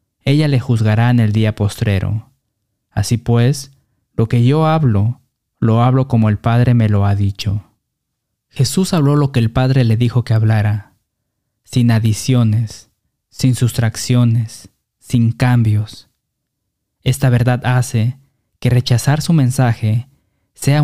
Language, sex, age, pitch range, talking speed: Spanish, male, 20-39, 110-135 Hz, 130 wpm